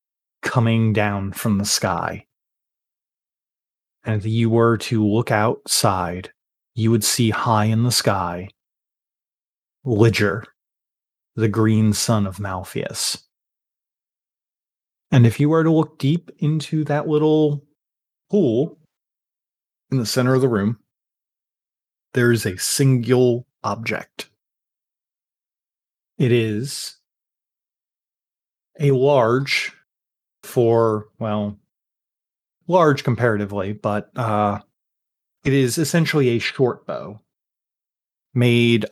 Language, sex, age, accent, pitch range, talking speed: English, male, 30-49, American, 105-135 Hz, 100 wpm